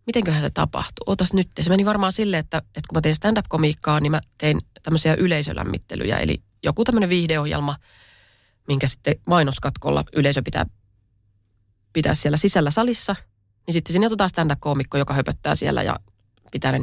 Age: 20-39